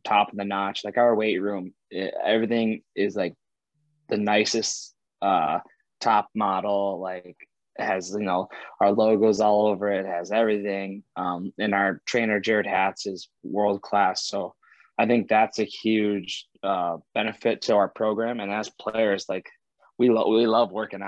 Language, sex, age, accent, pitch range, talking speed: English, male, 20-39, American, 95-105 Hz, 160 wpm